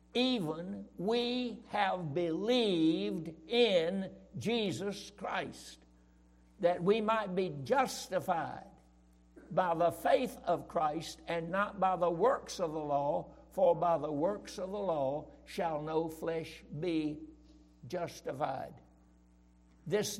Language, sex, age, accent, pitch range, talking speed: English, male, 60-79, American, 150-195 Hz, 115 wpm